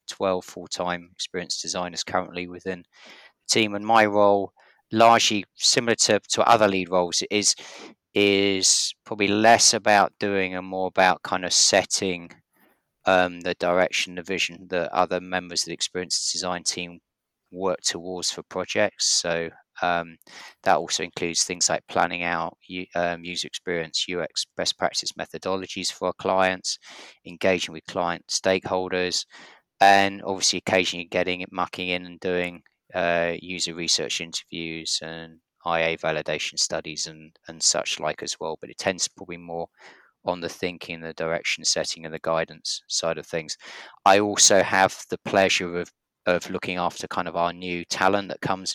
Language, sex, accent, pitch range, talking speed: English, male, British, 85-95 Hz, 160 wpm